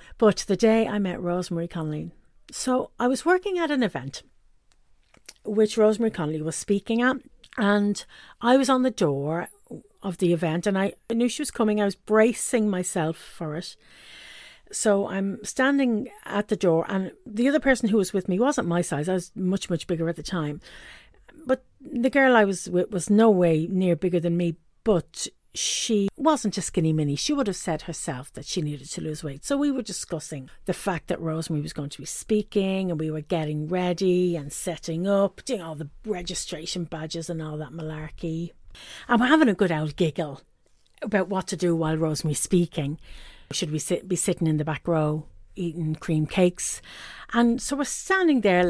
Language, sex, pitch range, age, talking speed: English, female, 165-220 Hz, 50-69, 195 wpm